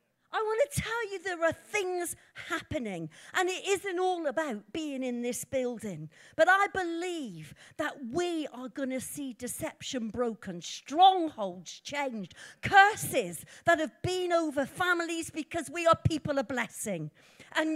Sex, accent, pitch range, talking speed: female, British, 245-370 Hz, 140 wpm